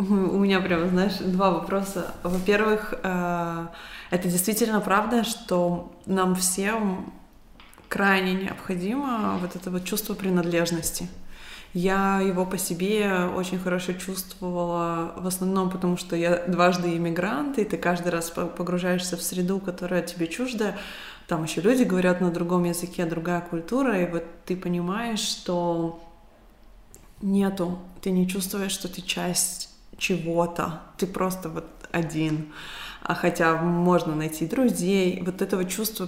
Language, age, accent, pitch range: Russian, 20-39, native, 170-190 Hz